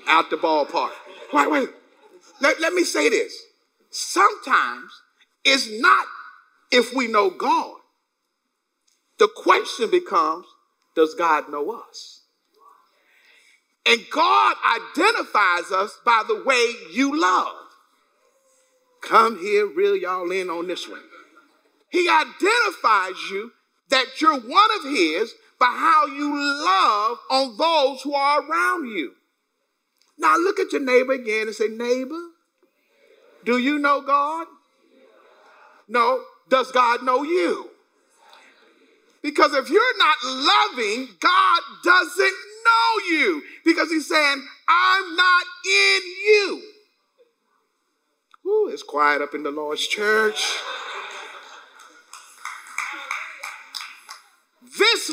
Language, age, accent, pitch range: English, 50-69, American, 260-420 Hz